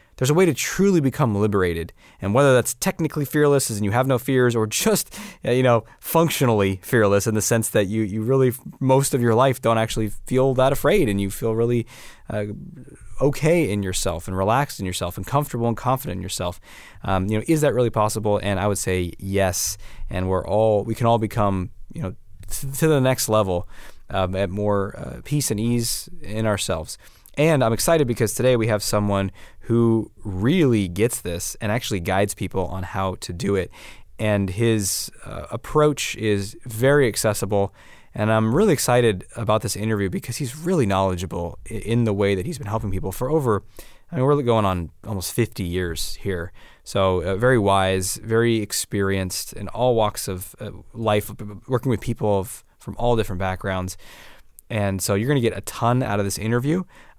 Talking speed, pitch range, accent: 185 wpm, 100-125 Hz, American